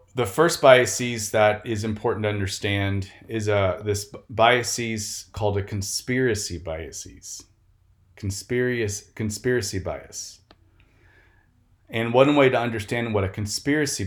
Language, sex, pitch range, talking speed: English, male, 95-120 Hz, 110 wpm